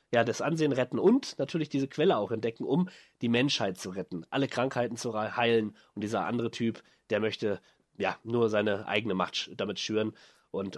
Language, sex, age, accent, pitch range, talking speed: German, male, 30-49, German, 120-165 Hz, 185 wpm